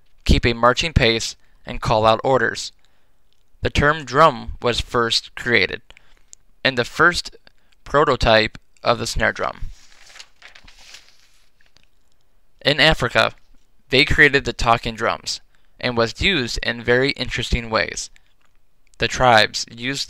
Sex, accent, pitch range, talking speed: male, American, 115-130 Hz, 115 wpm